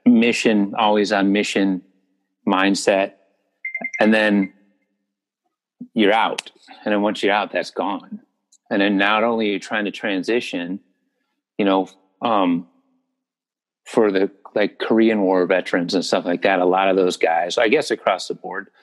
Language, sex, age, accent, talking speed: English, male, 40-59, American, 155 wpm